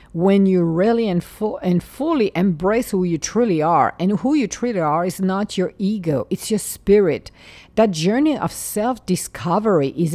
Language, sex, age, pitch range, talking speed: English, female, 50-69, 175-230 Hz, 160 wpm